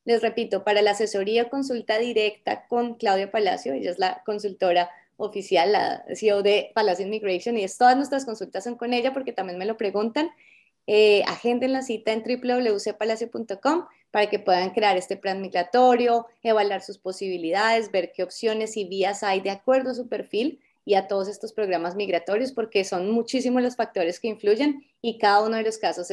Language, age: Spanish, 20-39